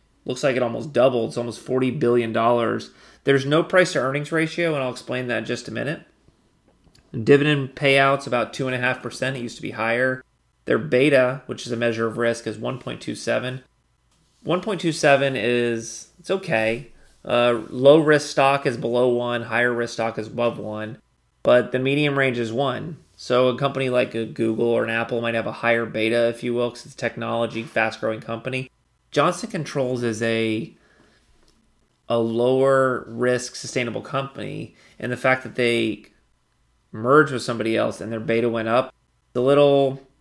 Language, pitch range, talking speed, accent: English, 115-135 Hz, 165 wpm, American